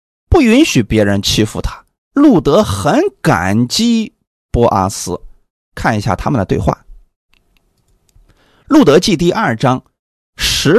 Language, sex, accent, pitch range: Chinese, male, native, 105-175 Hz